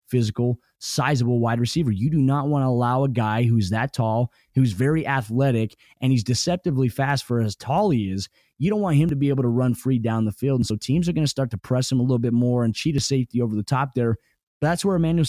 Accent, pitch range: American, 120-140 Hz